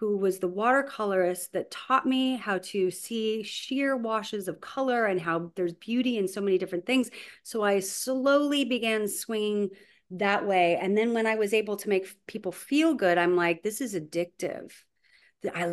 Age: 30-49